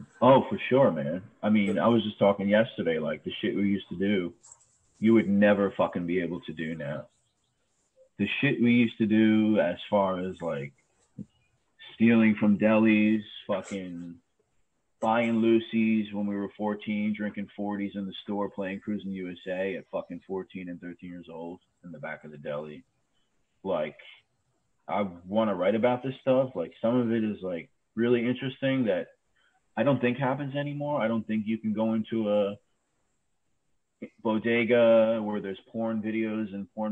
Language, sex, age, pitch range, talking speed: English, male, 30-49, 95-110 Hz, 170 wpm